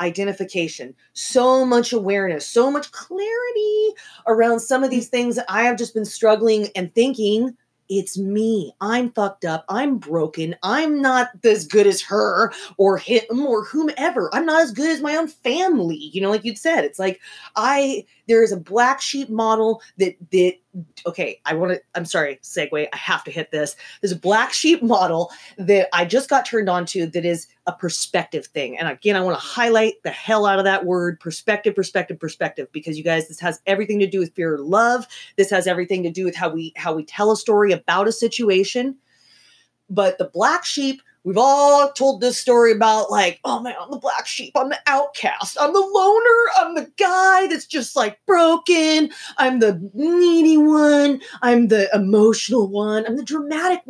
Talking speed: 195 wpm